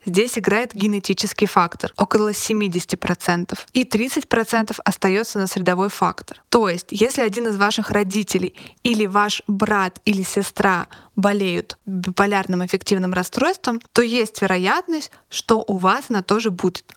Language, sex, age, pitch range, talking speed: Russian, female, 20-39, 195-230 Hz, 130 wpm